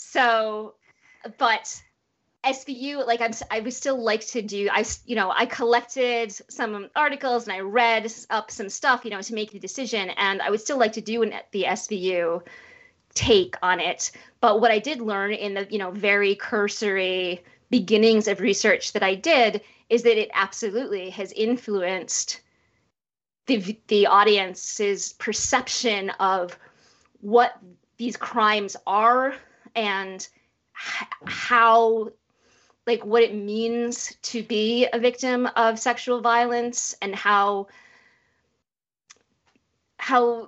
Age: 20-39